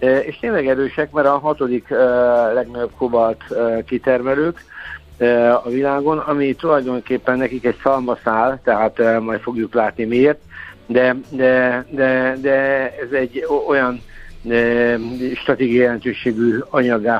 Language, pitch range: Hungarian, 115-135 Hz